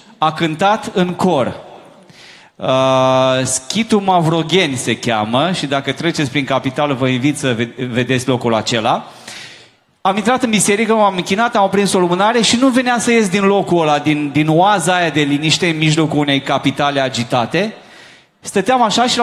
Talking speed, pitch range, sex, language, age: 165 wpm, 145-195 Hz, male, Romanian, 30-49